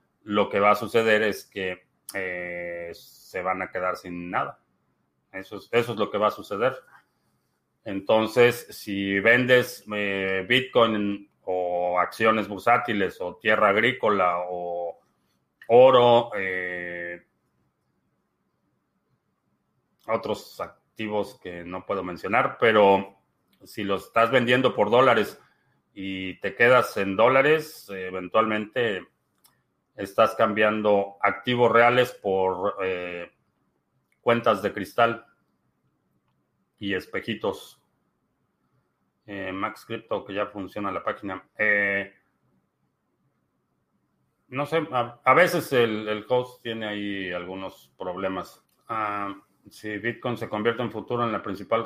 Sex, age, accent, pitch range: male, 30-49, Mexican, 95-115 Hz